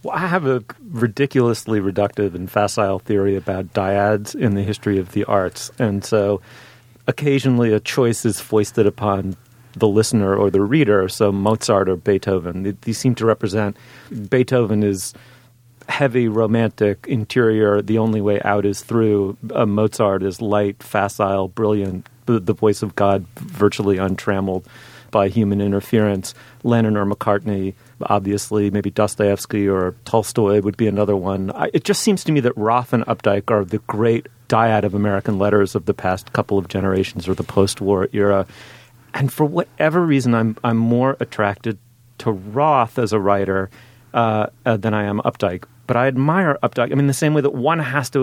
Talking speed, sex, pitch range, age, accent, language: 170 wpm, male, 100-120 Hz, 40-59, American, English